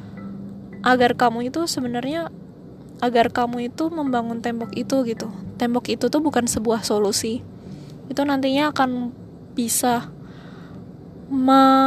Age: 10-29